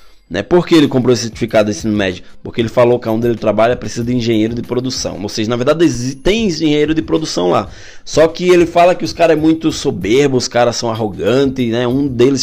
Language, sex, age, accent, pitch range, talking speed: Portuguese, male, 20-39, Brazilian, 115-160 Hz, 230 wpm